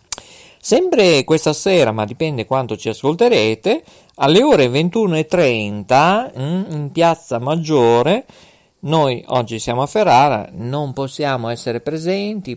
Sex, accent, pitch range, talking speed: male, native, 125-165 Hz, 110 wpm